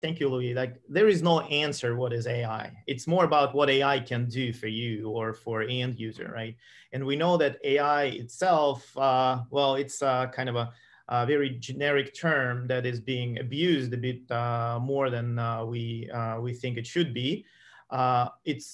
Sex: male